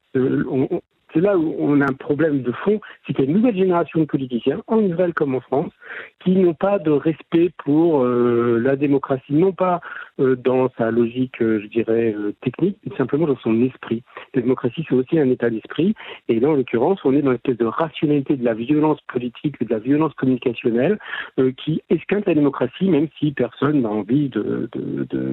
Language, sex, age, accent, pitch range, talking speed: French, male, 60-79, French, 120-150 Hz, 215 wpm